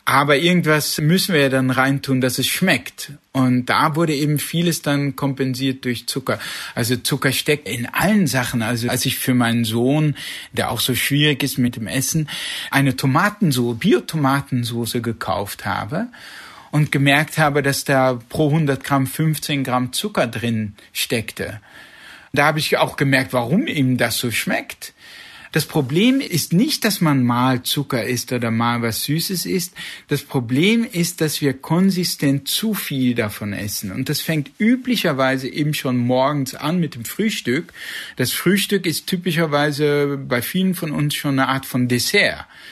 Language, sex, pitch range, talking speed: German, male, 125-160 Hz, 160 wpm